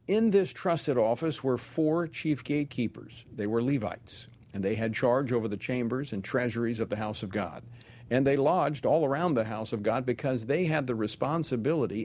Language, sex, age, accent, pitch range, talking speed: English, male, 50-69, American, 110-140 Hz, 195 wpm